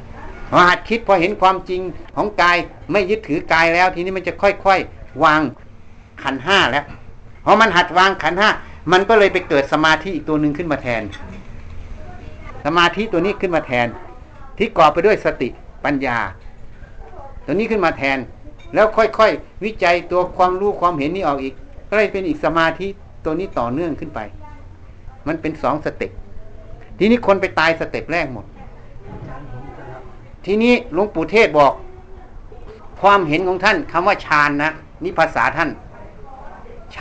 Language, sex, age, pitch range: Thai, male, 60-79, 120-190 Hz